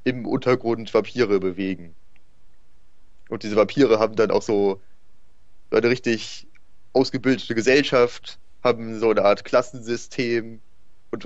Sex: male